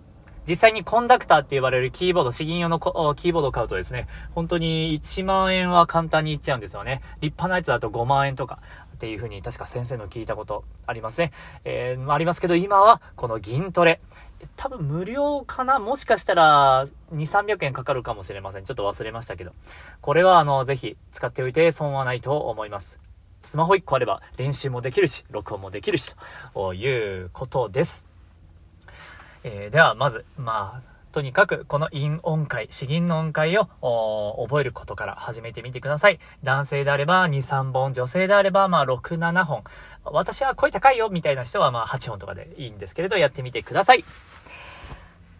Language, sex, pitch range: Japanese, male, 120-175 Hz